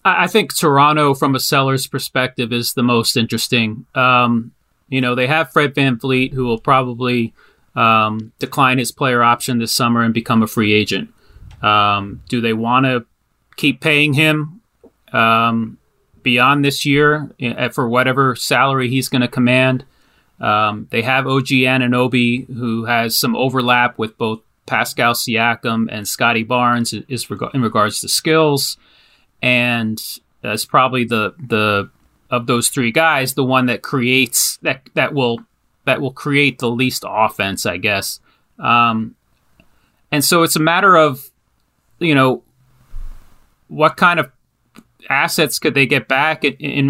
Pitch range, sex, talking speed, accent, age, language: 115-140 Hz, male, 145 wpm, American, 30-49, English